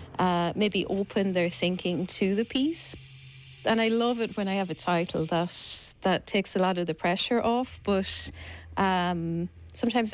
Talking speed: 170 wpm